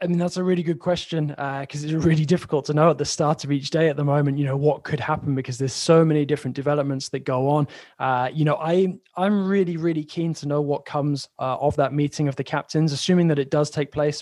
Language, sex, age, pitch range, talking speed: English, male, 20-39, 135-150 Hz, 265 wpm